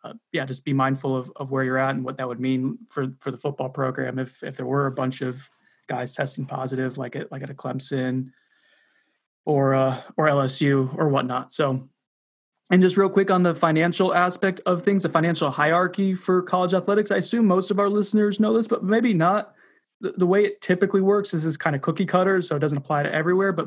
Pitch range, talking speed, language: 135-175 Hz, 225 wpm, English